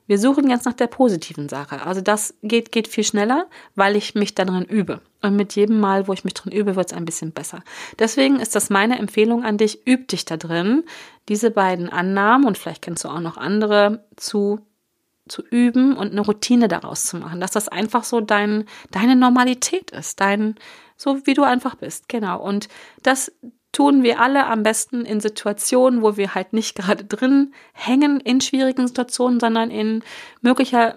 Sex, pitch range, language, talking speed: female, 200-255 Hz, German, 190 wpm